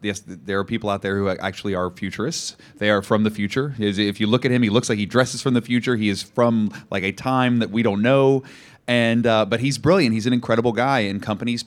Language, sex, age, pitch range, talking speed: English, male, 30-49, 105-135 Hz, 250 wpm